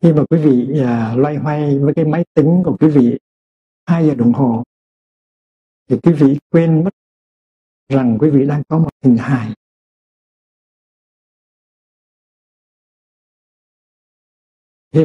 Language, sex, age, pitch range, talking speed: Vietnamese, male, 60-79, 125-155 Hz, 125 wpm